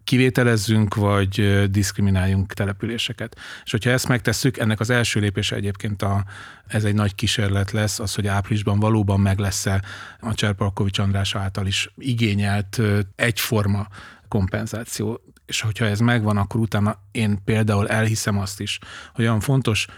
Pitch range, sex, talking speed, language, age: 100-120 Hz, male, 140 wpm, Hungarian, 30-49